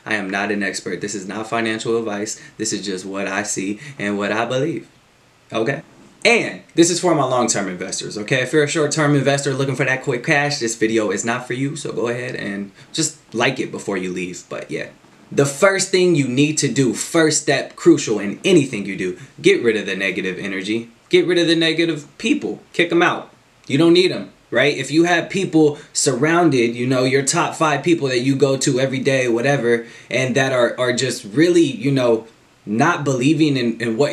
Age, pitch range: 20-39, 110-150 Hz